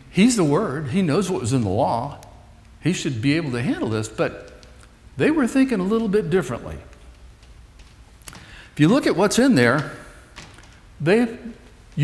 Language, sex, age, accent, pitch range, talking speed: English, male, 60-79, American, 115-190 Hz, 165 wpm